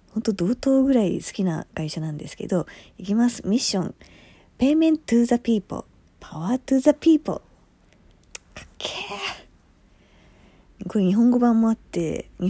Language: Japanese